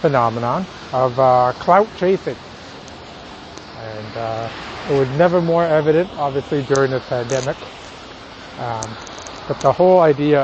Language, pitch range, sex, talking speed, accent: English, 135-170 Hz, male, 120 wpm, American